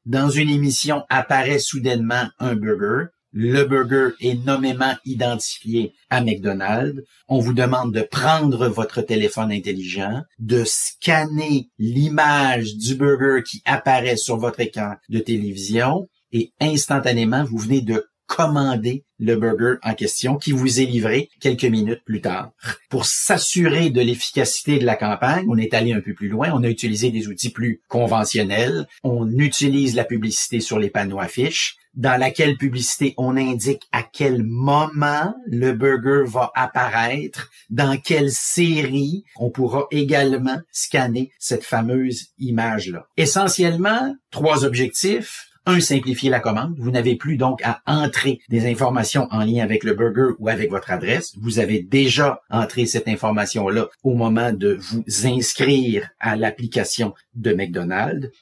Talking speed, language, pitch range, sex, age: 145 wpm, French, 115-140 Hz, male, 50-69